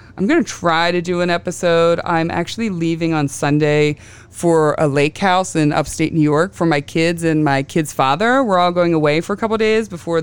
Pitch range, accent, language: 145-190 Hz, American, English